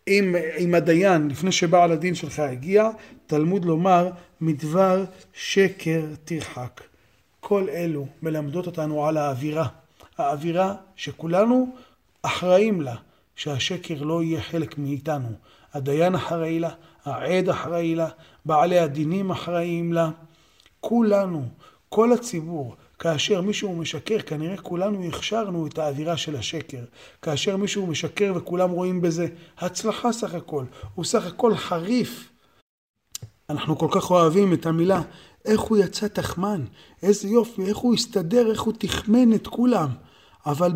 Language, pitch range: Hebrew, 155-195 Hz